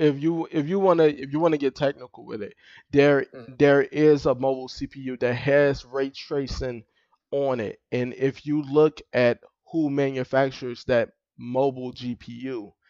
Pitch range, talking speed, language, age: 120-140 Hz, 160 wpm, English, 20-39